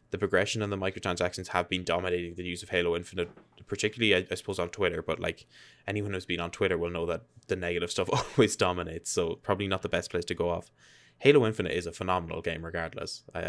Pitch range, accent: 85-95 Hz, Irish